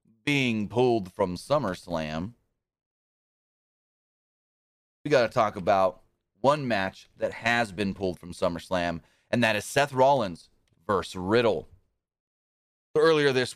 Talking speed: 115 wpm